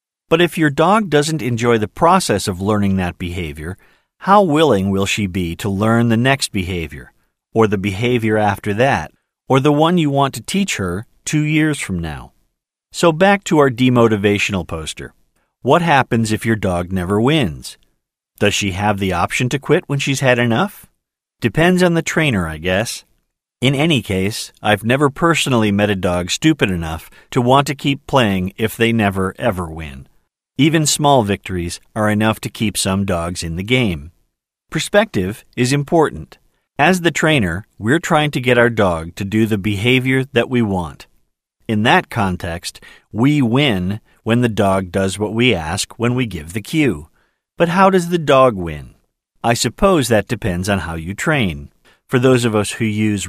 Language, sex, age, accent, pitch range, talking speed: English, male, 40-59, American, 95-135 Hz, 180 wpm